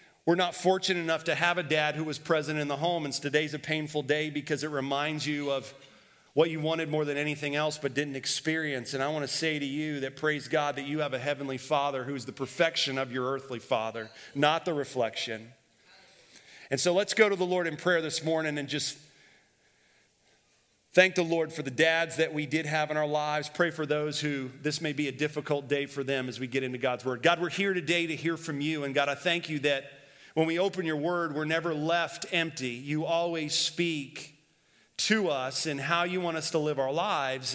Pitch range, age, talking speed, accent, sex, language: 140-170 Hz, 40-59, 225 wpm, American, male, English